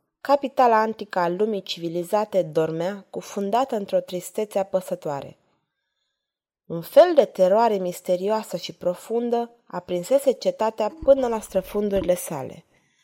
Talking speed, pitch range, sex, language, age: 105 wpm, 180-220 Hz, female, Romanian, 20-39